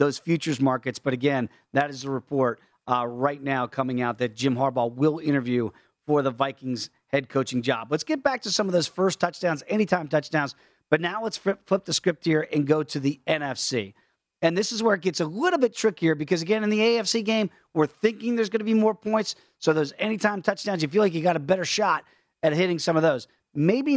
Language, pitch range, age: English, 135-185 Hz, 40-59